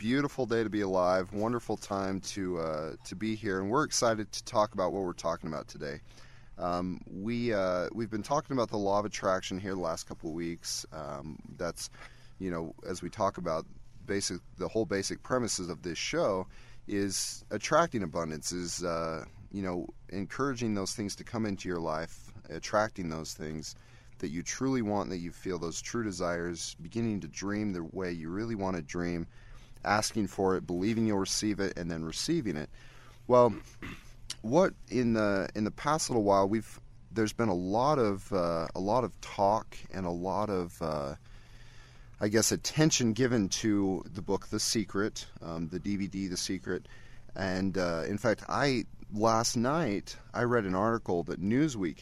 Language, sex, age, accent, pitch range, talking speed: English, male, 30-49, American, 90-115 Hz, 180 wpm